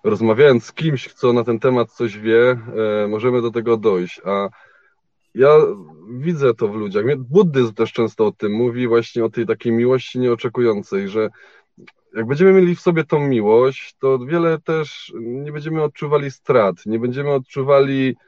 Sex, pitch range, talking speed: male, 115-150 Hz, 165 wpm